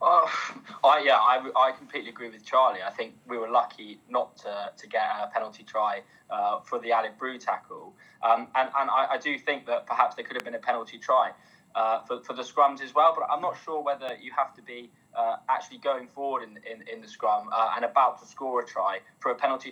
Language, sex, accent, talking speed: English, male, British, 235 wpm